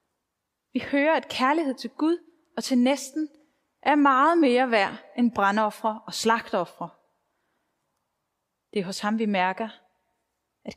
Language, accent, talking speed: Danish, native, 135 wpm